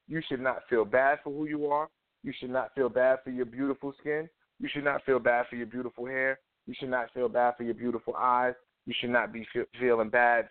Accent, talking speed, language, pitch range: American, 245 wpm, English, 120-150 Hz